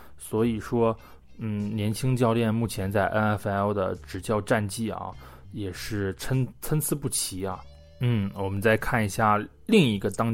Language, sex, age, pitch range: Chinese, male, 20-39, 100-125 Hz